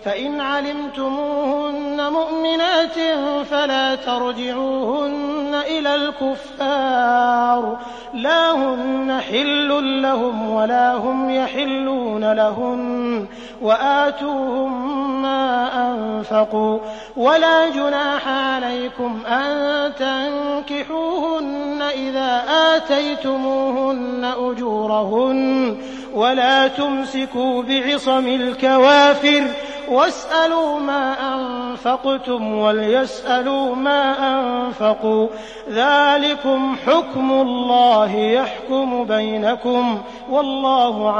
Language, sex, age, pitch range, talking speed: English, male, 30-49, 245-285 Hz, 60 wpm